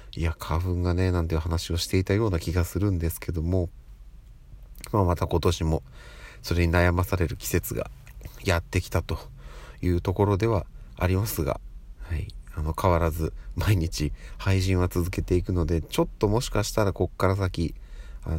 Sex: male